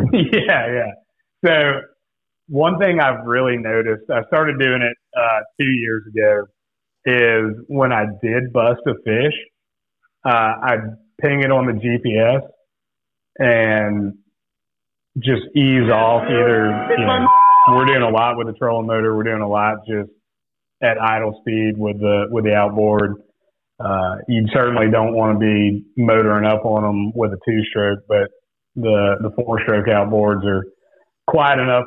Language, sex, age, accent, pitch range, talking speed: English, male, 30-49, American, 105-125 Hz, 150 wpm